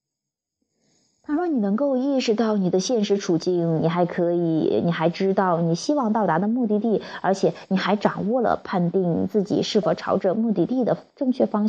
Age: 20-39